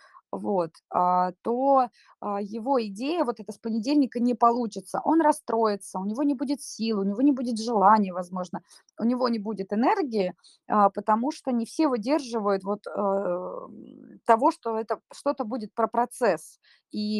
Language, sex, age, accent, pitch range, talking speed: Russian, female, 20-39, native, 205-255 Hz, 145 wpm